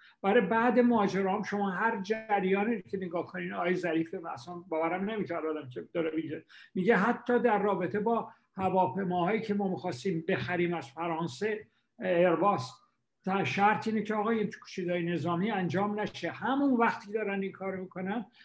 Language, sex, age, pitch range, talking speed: Persian, male, 60-79, 170-205 Hz, 145 wpm